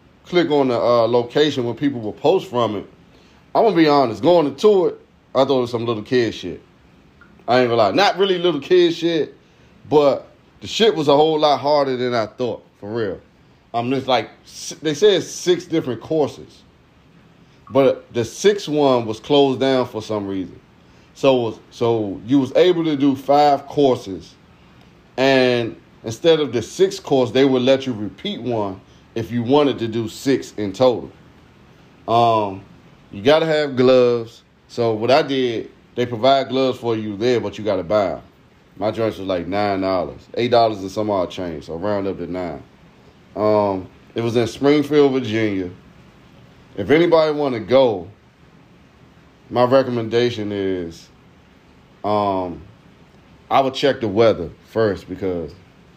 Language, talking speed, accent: English, 170 wpm, American